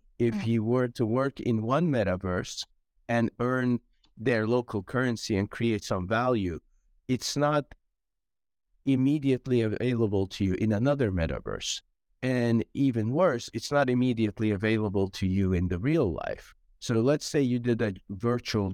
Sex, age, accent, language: male, 50-69, American, English